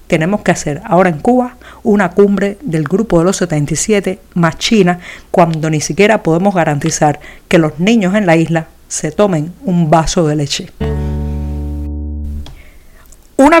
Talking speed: 145 wpm